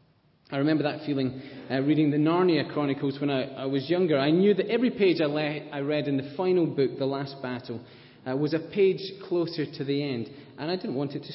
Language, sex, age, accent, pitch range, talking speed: English, male, 30-49, British, 130-160 Hz, 225 wpm